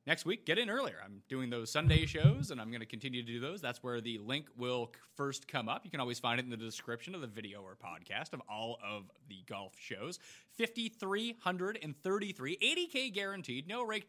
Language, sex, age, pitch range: English, male, 30-49, 125-180 Hz